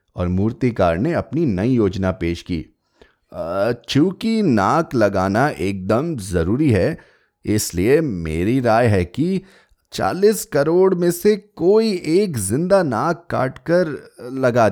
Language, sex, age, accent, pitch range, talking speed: Hindi, male, 30-49, native, 95-155 Hz, 120 wpm